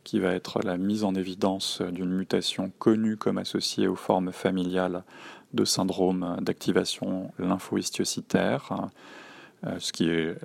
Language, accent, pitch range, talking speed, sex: French, French, 95-110 Hz, 125 wpm, male